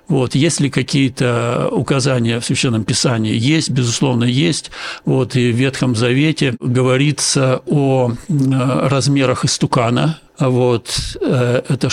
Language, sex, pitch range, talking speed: Russian, male, 125-145 Hz, 110 wpm